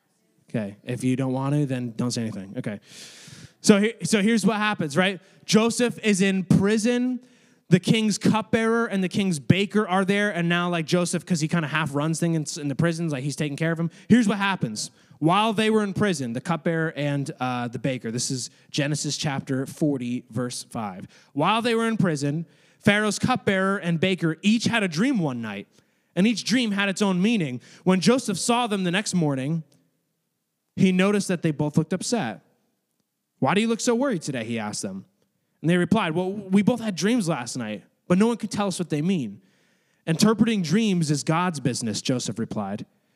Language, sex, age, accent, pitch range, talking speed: English, male, 20-39, American, 150-210 Hz, 200 wpm